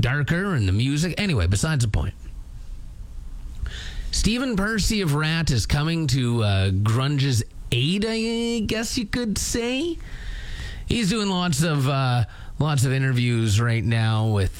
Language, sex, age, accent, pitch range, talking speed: English, male, 30-49, American, 110-185 Hz, 140 wpm